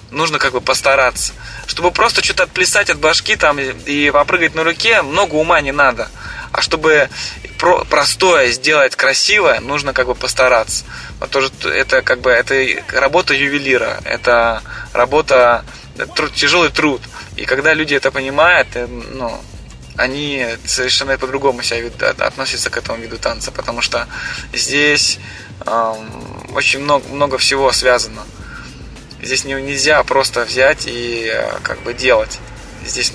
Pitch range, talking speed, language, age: 115-145 Hz, 130 wpm, Russian, 20-39